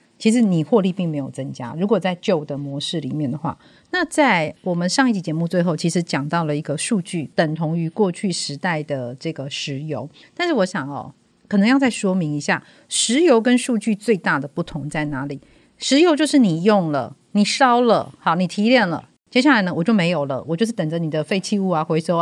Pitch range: 155-220 Hz